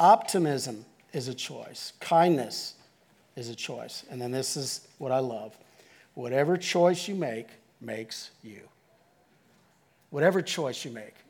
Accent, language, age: American, English, 50-69